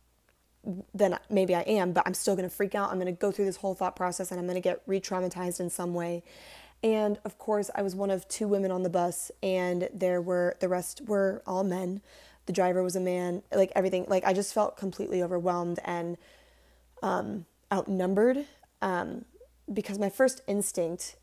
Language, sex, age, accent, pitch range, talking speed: English, female, 20-39, American, 180-205 Hz, 200 wpm